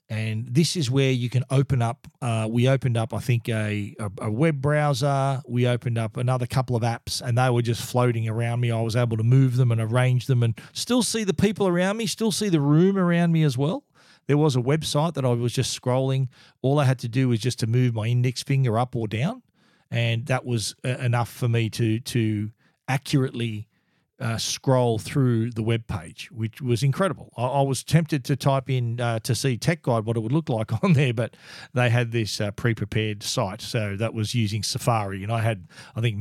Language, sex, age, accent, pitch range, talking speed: English, male, 40-59, Australian, 115-145 Hz, 220 wpm